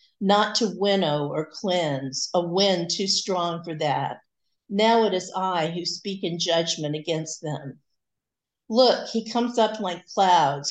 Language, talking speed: English, 150 wpm